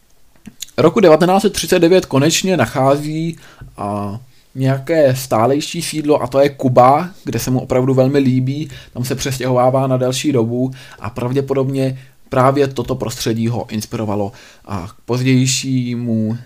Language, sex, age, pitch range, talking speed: Czech, male, 20-39, 120-145 Hz, 130 wpm